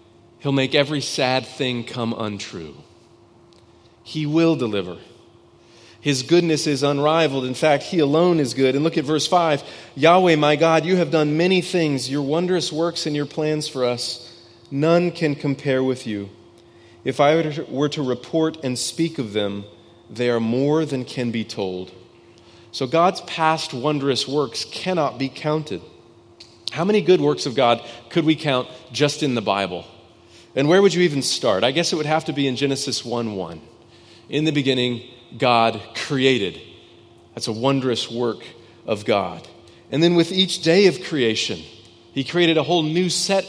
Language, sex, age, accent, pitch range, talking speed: English, male, 30-49, American, 115-160 Hz, 170 wpm